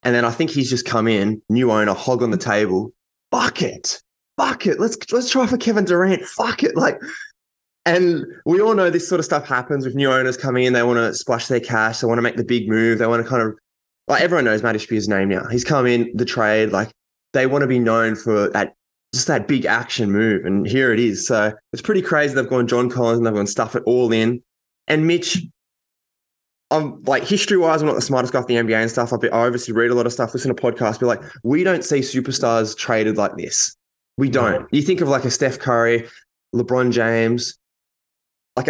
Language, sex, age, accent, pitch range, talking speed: English, male, 20-39, Australian, 115-140 Hz, 230 wpm